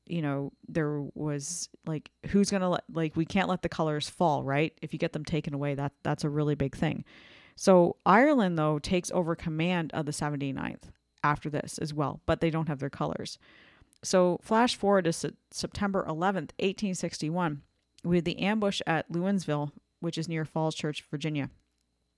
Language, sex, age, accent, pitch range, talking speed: English, female, 30-49, American, 150-185 Hz, 175 wpm